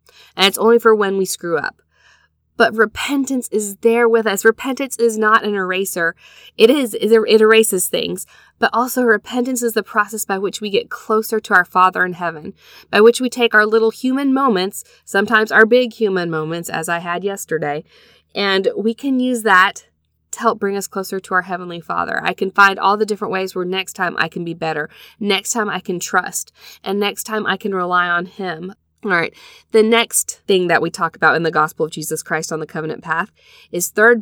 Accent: American